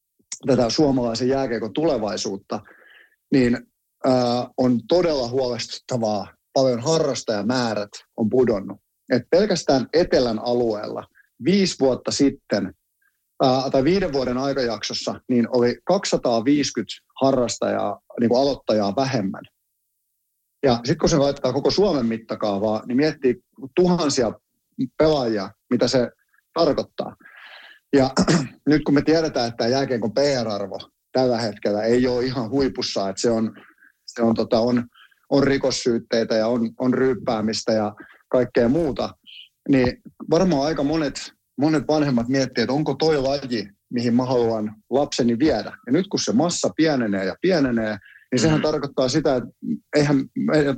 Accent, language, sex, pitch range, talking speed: native, Finnish, male, 115-140 Hz, 120 wpm